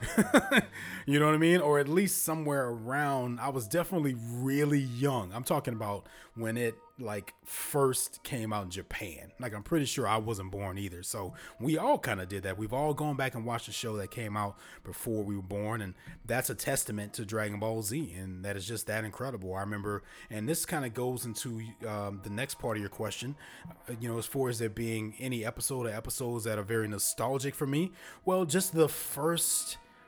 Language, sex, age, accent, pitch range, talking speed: English, male, 30-49, American, 110-135 Hz, 210 wpm